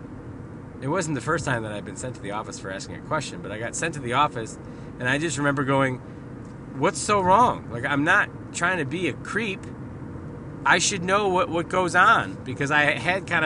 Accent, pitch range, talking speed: American, 120-160 Hz, 225 wpm